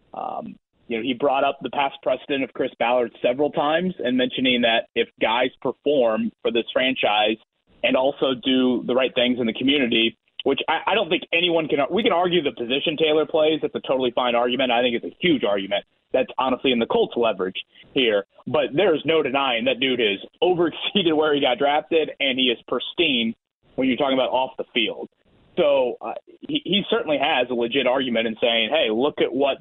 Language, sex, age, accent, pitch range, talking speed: English, male, 30-49, American, 120-155 Hz, 210 wpm